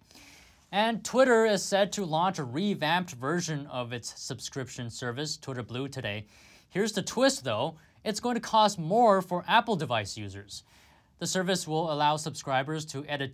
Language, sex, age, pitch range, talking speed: English, male, 20-39, 120-160 Hz, 160 wpm